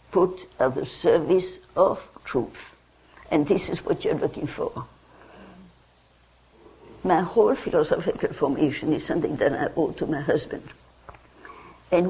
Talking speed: 130 wpm